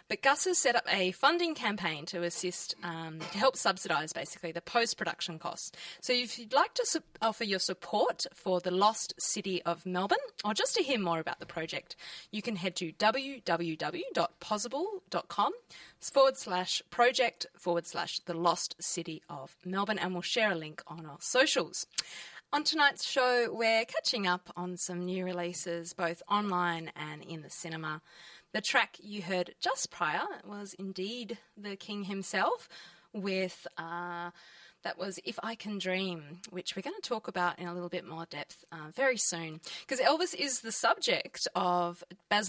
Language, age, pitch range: English, 20-39, 170-220 Hz